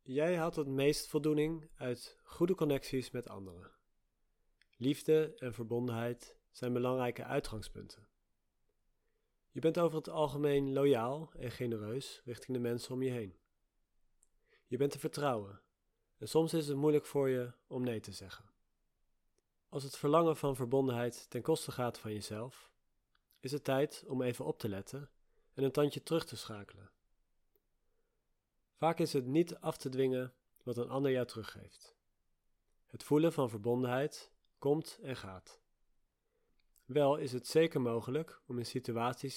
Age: 40-59